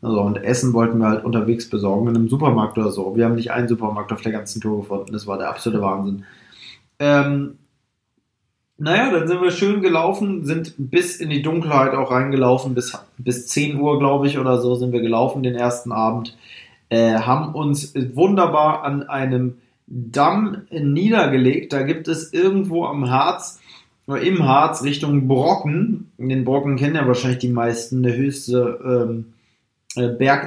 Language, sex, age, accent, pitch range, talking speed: German, male, 20-39, German, 125-160 Hz, 170 wpm